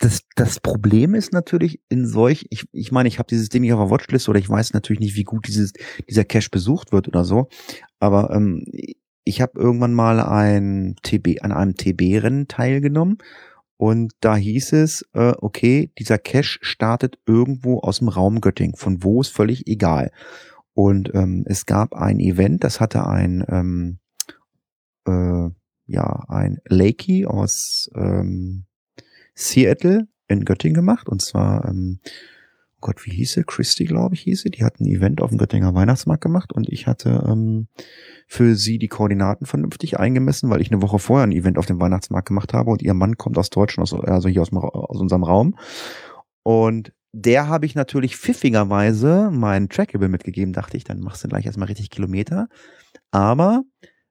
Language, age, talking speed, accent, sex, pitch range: German, 30-49, 175 wpm, German, male, 95-125 Hz